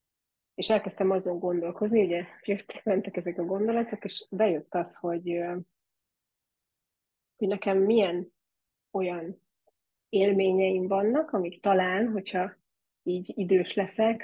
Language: Hungarian